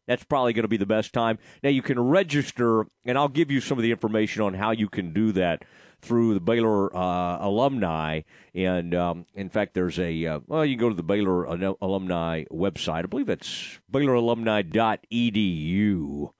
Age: 40-59